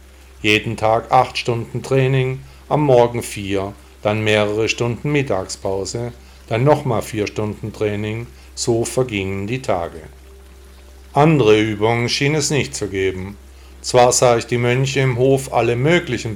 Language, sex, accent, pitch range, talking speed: German, male, German, 95-125 Hz, 135 wpm